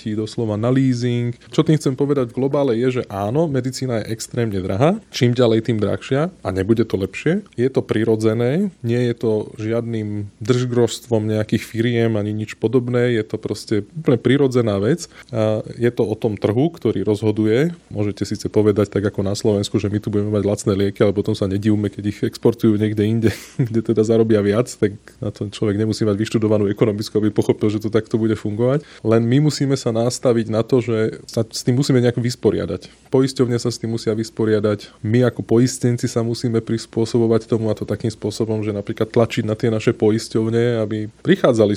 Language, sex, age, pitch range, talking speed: Slovak, male, 20-39, 110-125 Hz, 190 wpm